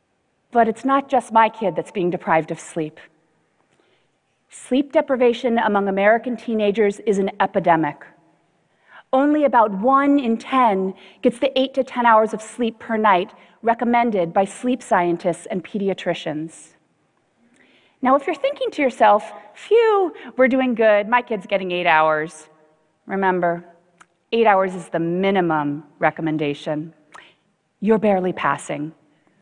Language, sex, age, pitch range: Chinese, female, 40-59, 180-235 Hz